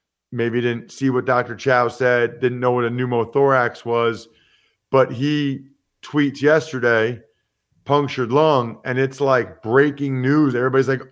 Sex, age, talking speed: male, 40-59, 140 wpm